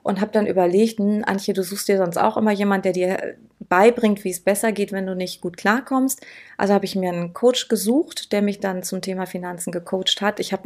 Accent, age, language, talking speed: German, 30-49, German, 230 wpm